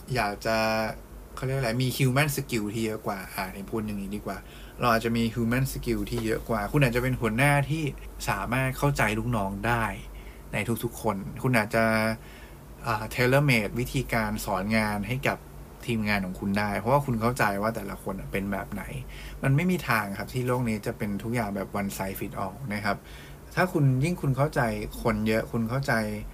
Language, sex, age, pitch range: English, male, 20-39, 100-125 Hz